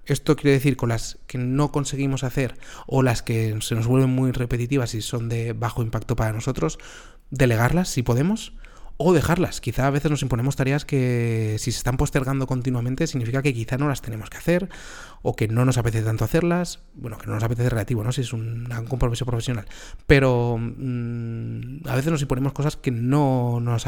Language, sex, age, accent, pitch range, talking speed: Spanish, male, 30-49, Spanish, 115-135 Hz, 195 wpm